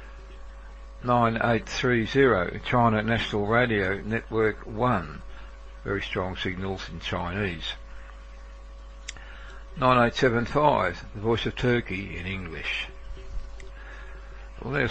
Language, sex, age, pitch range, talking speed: English, male, 60-79, 90-110 Hz, 75 wpm